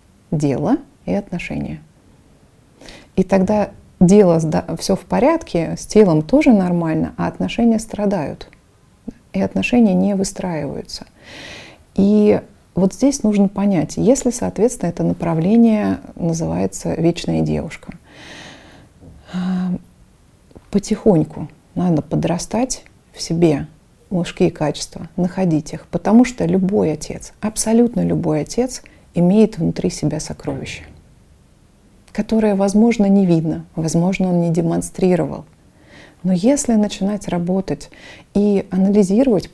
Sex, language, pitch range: female, Russian, 165-215 Hz